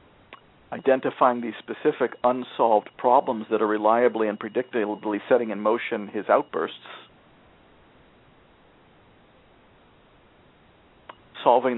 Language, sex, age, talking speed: English, male, 50-69, 80 wpm